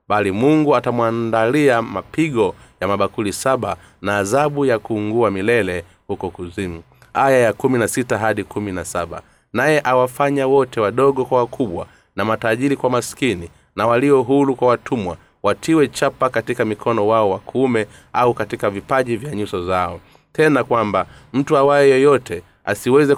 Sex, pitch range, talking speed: male, 105-135 Hz, 135 wpm